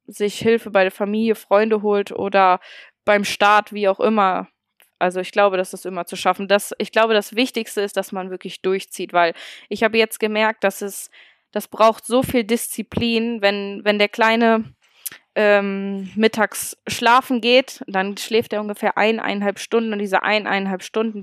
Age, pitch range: 20-39, 200-225 Hz